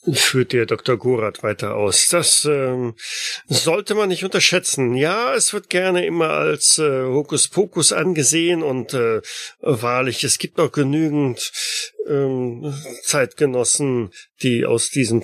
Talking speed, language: 130 wpm, German